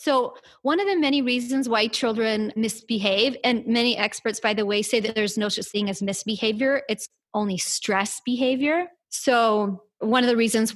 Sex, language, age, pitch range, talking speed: female, English, 30-49, 205-255 Hz, 180 wpm